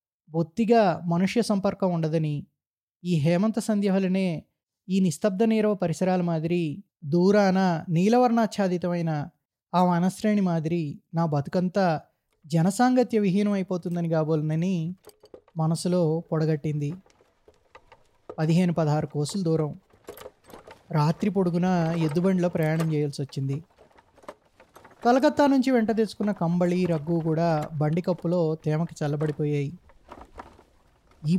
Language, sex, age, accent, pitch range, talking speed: Telugu, male, 20-39, native, 160-200 Hz, 90 wpm